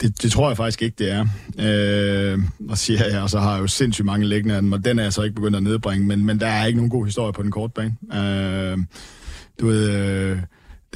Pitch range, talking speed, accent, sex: 105-125 Hz, 235 wpm, native, male